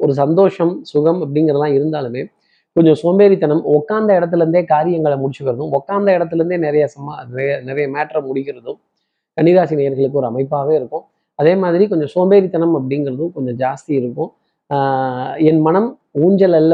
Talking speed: 130 wpm